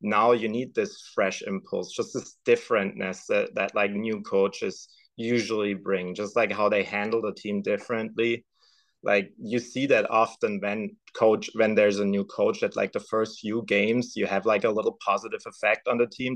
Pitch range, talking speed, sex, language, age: 100-120 Hz, 190 wpm, male, English, 30-49